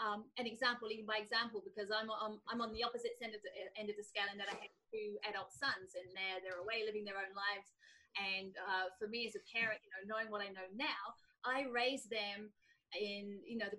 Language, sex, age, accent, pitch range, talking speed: English, female, 30-49, British, 205-275 Hz, 245 wpm